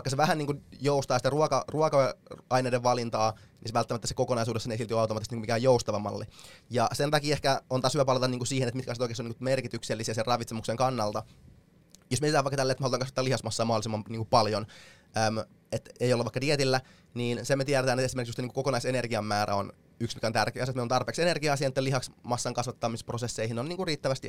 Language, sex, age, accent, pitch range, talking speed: Finnish, male, 20-39, native, 115-135 Hz, 210 wpm